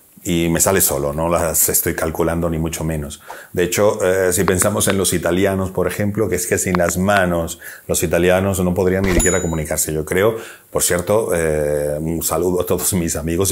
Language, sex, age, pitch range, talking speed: Spanish, male, 40-59, 85-115 Hz, 200 wpm